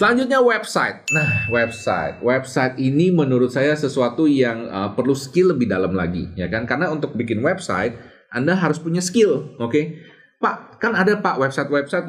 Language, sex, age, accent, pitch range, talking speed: Indonesian, male, 30-49, native, 110-155 Hz, 165 wpm